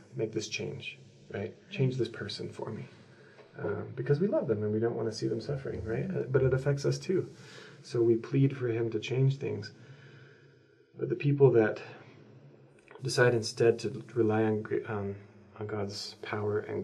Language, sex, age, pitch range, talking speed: English, male, 30-49, 105-115 Hz, 180 wpm